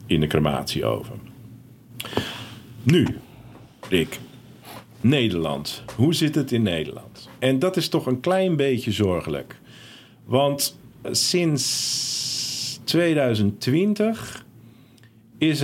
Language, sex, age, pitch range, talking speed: Dutch, male, 50-69, 105-130 Hz, 90 wpm